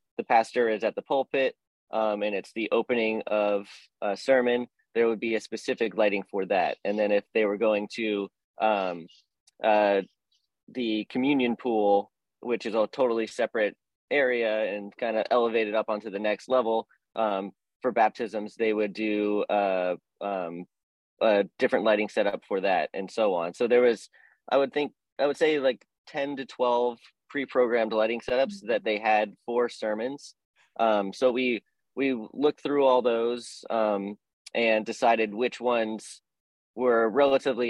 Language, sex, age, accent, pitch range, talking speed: English, male, 30-49, American, 105-120 Hz, 160 wpm